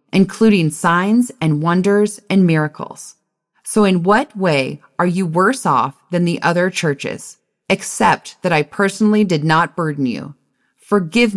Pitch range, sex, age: 155-205 Hz, female, 30-49